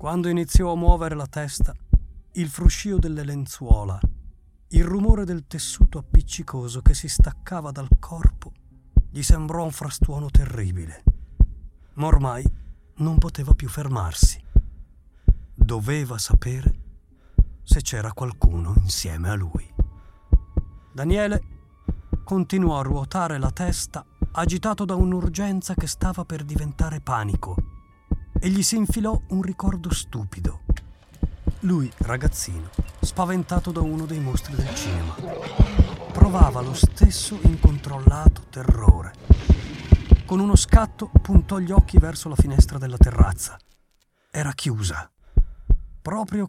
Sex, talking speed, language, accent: male, 115 wpm, Italian, native